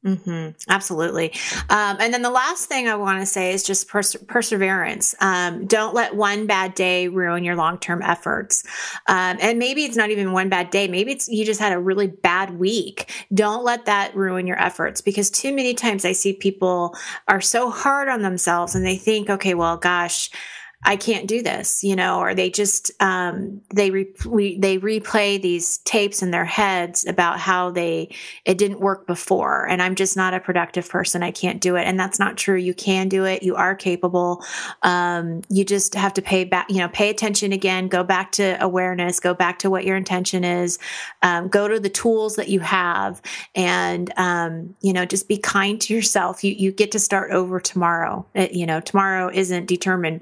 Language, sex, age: English, female, 30-49